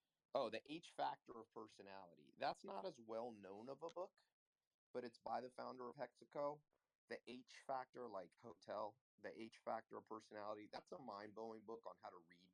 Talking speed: 190 wpm